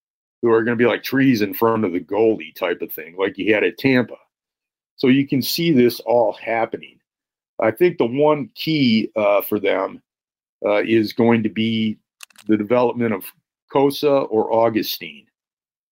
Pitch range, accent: 105-125 Hz, American